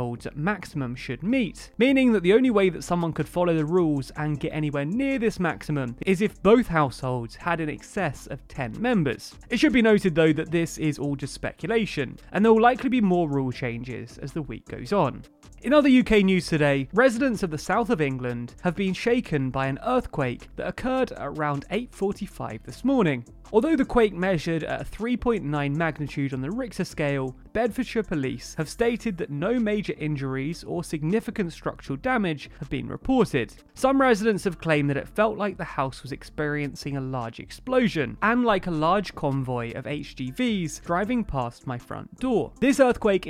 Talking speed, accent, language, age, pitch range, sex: 185 wpm, British, English, 30-49, 140-220 Hz, male